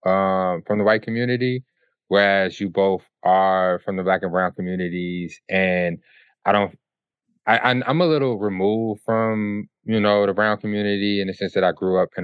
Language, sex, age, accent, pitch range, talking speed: English, male, 20-39, American, 90-105 Hz, 185 wpm